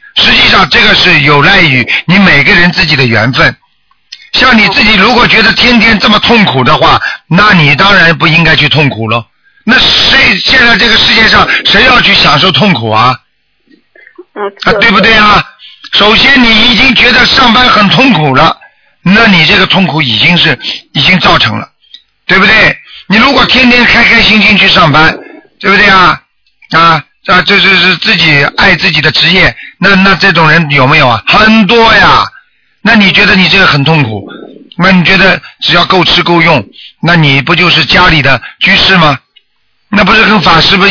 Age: 50-69